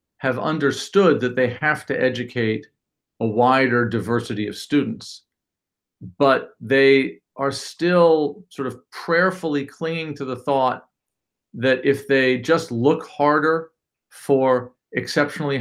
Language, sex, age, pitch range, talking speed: English, male, 50-69, 125-145 Hz, 120 wpm